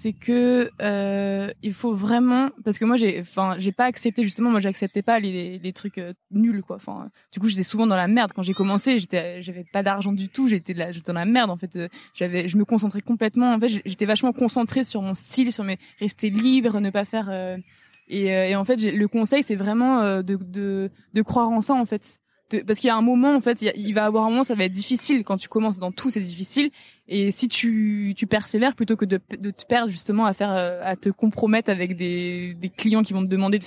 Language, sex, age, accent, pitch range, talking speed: French, female, 20-39, French, 190-230 Hz, 255 wpm